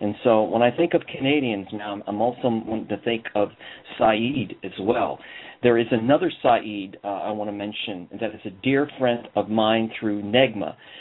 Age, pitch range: 50-69, 105-130 Hz